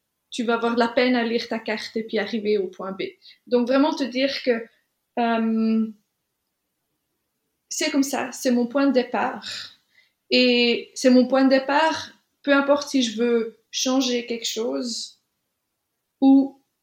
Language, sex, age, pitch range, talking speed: French, female, 20-39, 230-275 Hz, 155 wpm